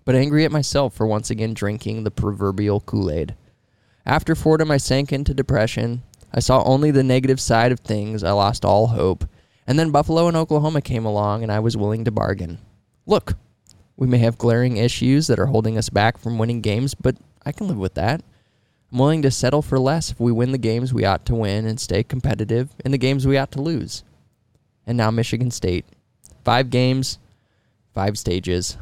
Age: 20-39